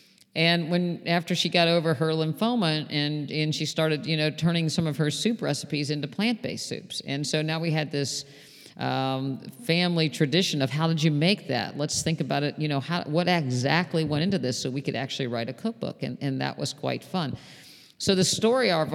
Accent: American